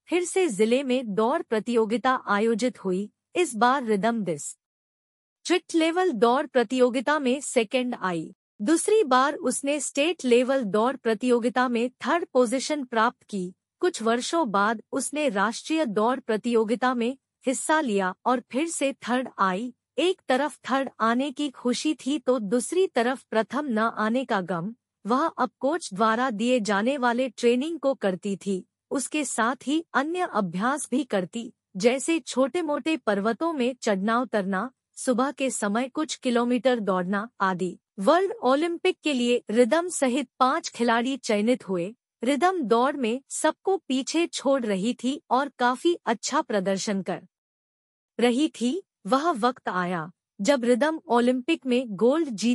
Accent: Indian